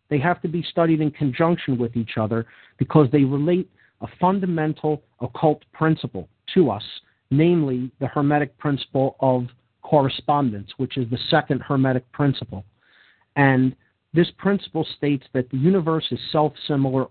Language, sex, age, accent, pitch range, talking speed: English, male, 50-69, American, 120-150 Hz, 140 wpm